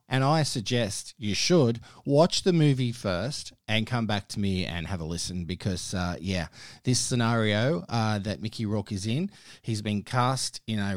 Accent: Australian